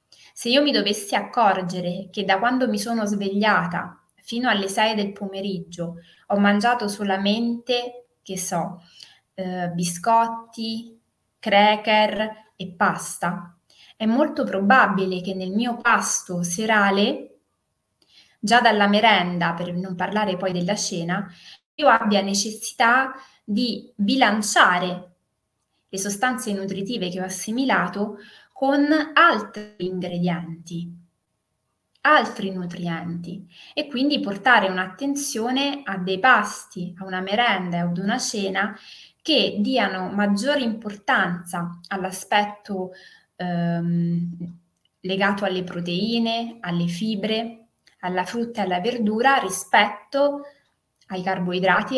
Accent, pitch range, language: native, 180-230 Hz, Italian